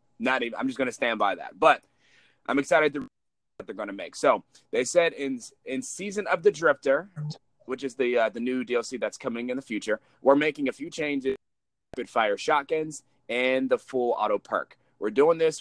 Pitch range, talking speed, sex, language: 130-220 Hz, 205 wpm, male, English